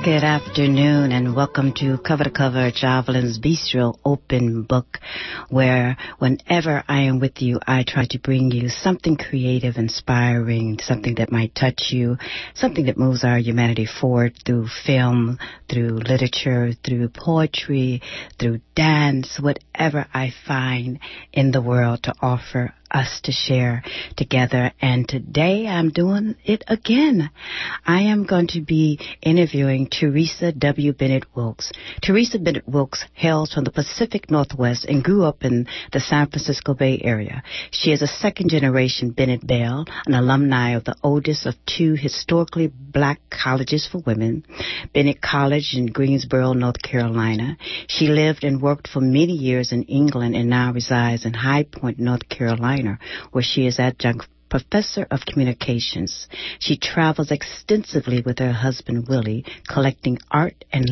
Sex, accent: female, American